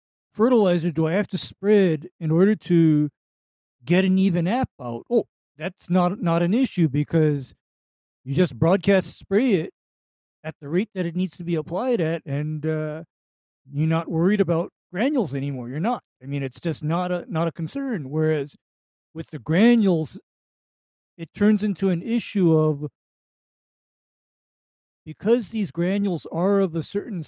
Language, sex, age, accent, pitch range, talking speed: English, male, 50-69, American, 155-200 Hz, 160 wpm